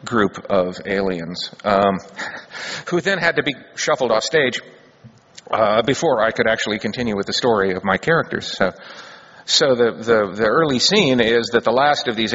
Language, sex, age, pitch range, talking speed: English, male, 50-69, 100-130 Hz, 180 wpm